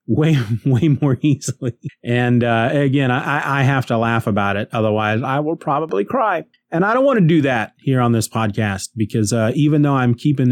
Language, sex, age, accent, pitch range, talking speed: English, male, 30-49, American, 110-135 Hz, 205 wpm